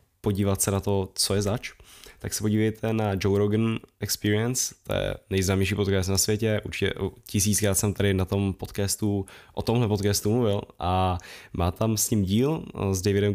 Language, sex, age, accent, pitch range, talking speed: Czech, male, 10-29, native, 95-105 Hz, 175 wpm